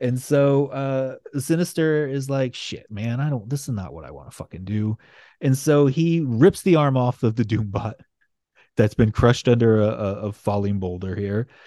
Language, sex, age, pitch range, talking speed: English, male, 30-49, 105-135 Hz, 200 wpm